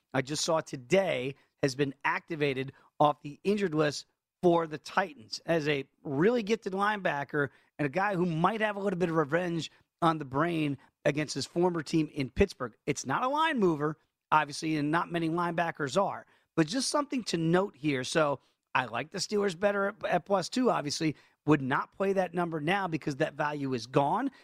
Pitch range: 145-185 Hz